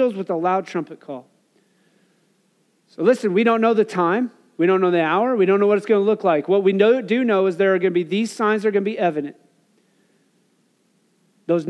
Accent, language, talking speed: American, English, 225 wpm